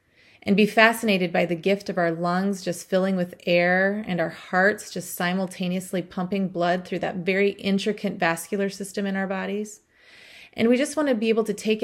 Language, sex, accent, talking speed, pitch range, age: English, female, American, 195 wpm, 180-220 Hz, 30-49